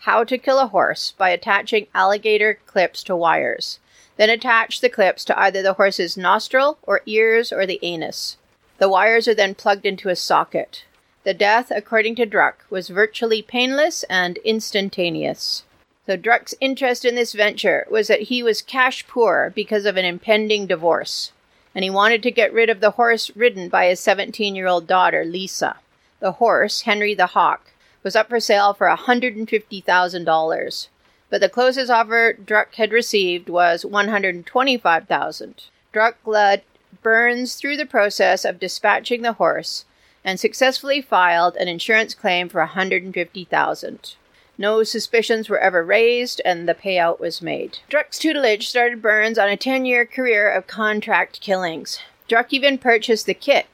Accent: American